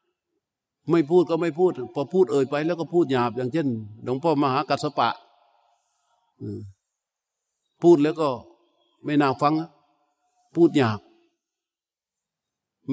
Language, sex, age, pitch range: Thai, male, 60-79, 130-165 Hz